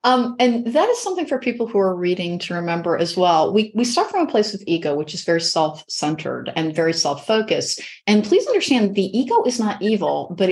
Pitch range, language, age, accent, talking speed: 175-210 Hz, English, 30-49, American, 230 wpm